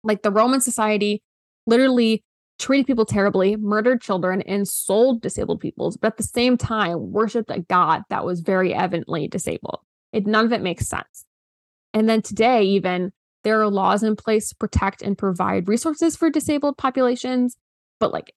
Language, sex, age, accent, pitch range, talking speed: English, female, 20-39, American, 185-225 Hz, 170 wpm